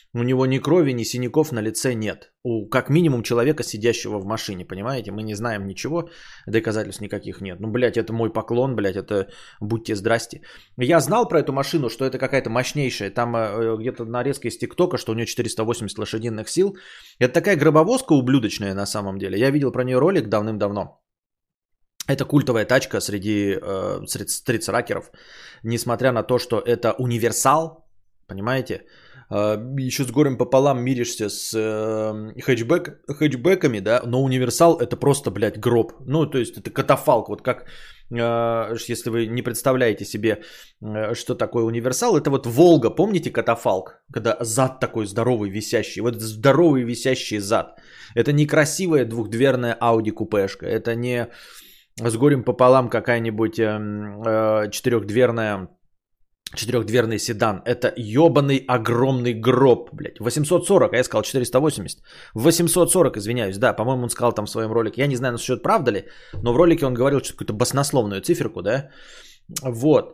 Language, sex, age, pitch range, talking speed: Bulgarian, male, 20-39, 110-135 Hz, 150 wpm